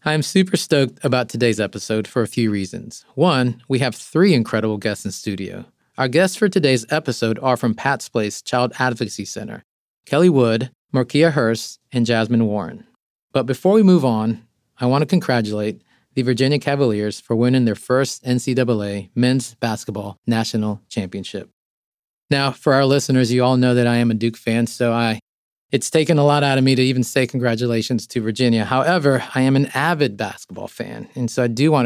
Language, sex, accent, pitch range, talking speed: English, male, American, 110-135 Hz, 185 wpm